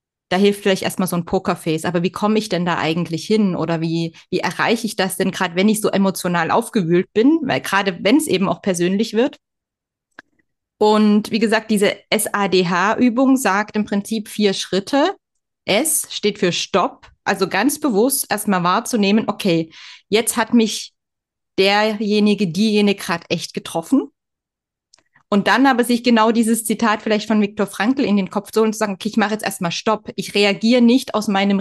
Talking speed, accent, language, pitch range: 180 wpm, German, German, 185-220 Hz